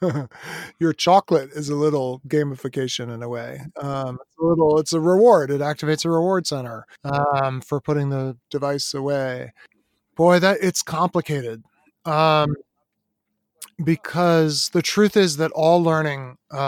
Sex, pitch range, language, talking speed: male, 140-165 Hz, English, 140 wpm